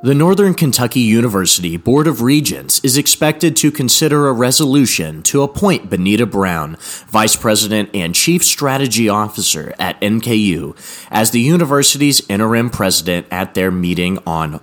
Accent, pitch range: American, 95-130 Hz